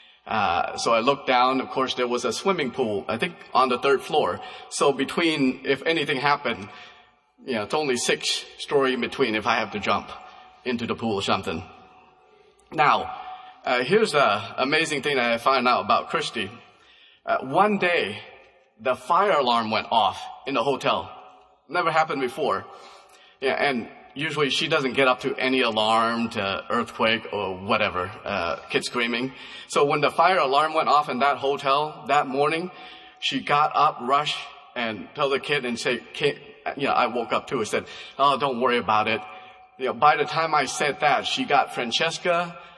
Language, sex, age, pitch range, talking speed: English, male, 30-49, 125-160 Hz, 185 wpm